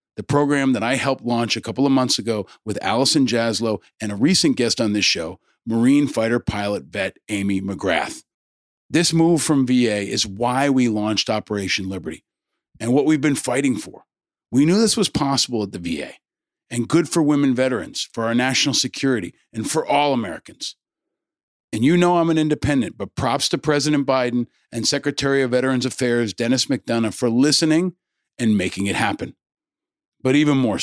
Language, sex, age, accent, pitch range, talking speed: English, male, 40-59, American, 110-145 Hz, 175 wpm